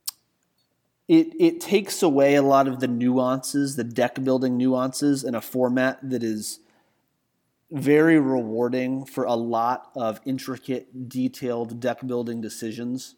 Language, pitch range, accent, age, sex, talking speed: English, 115-140 Hz, American, 30-49, male, 125 wpm